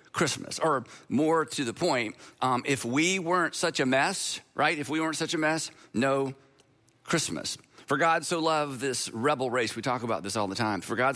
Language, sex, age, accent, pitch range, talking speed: English, male, 50-69, American, 125-150 Hz, 205 wpm